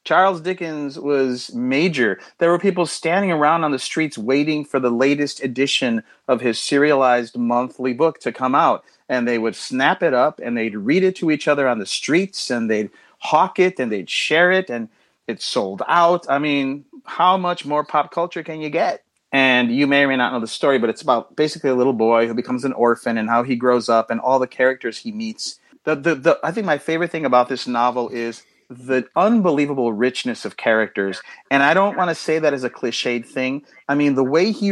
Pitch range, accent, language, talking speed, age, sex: 120-155 Hz, American, English, 220 wpm, 30-49, male